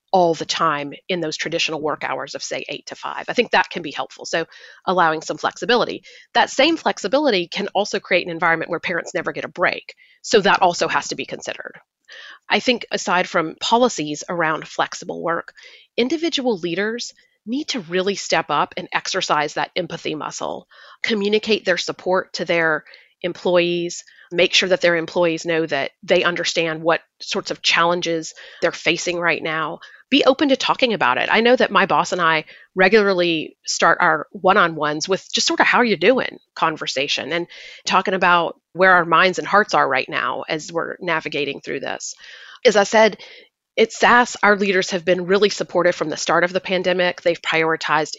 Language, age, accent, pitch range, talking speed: English, 30-49, American, 165-210 Hz, 185 wpm